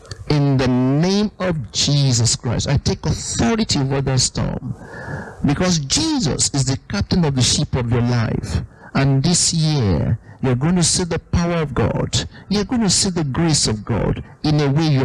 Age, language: 50-69, English